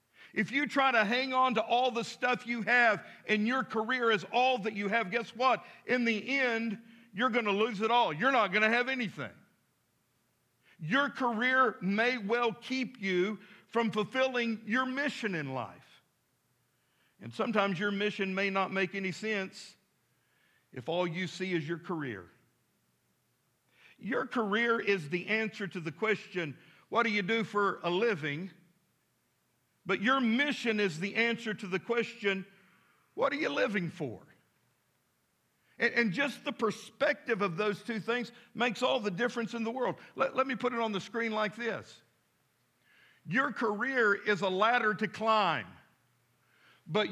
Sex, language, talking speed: male, English, 165 wpm